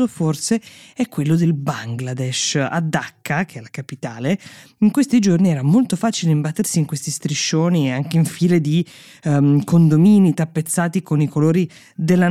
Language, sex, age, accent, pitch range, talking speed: Italian, female, 20-39, native, 140-175 Hz, 155 wpm